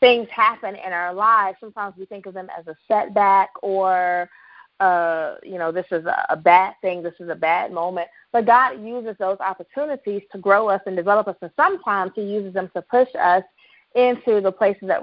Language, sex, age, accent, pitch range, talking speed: English, female, 30-49, American, 185-230 Hz, 200 wpm